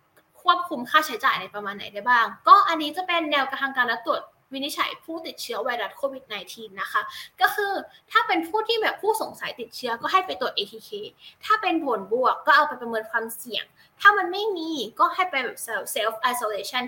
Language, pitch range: Thai, 230-345 Hz